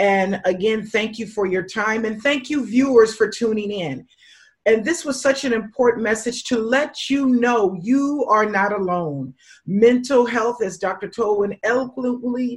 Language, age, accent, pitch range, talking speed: English, 40-59, American, 195-245 Hz, 165 wpm